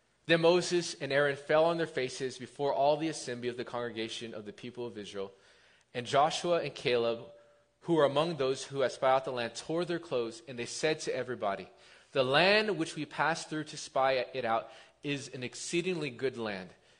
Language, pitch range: English, 135-180 Hz